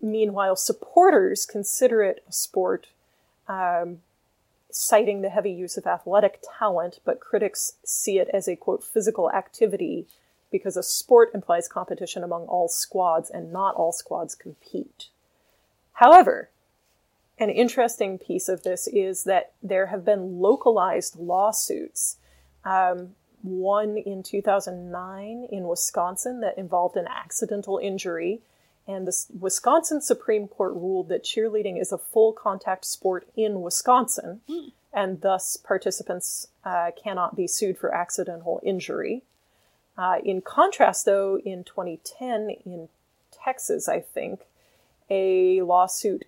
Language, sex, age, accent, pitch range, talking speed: English, female, 30-49, American, 180-225 Hz, 125 wpm